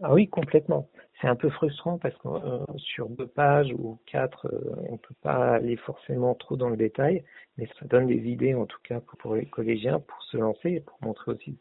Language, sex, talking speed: French, male, 245 wpm